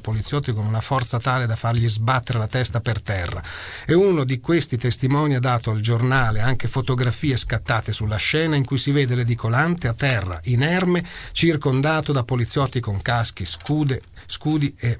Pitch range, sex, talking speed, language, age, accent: 105-145 Hz, male, 165 wpm, Italian, 40-59, native